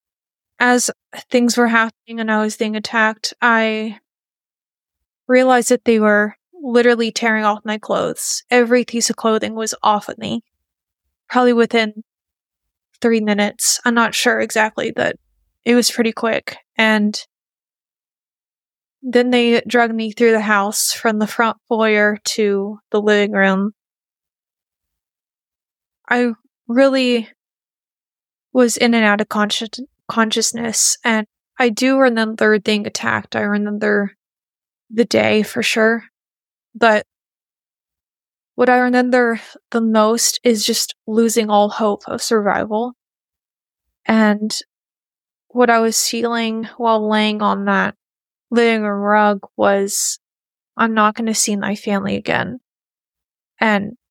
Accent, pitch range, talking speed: American, 210-235 Hz, 125 wpm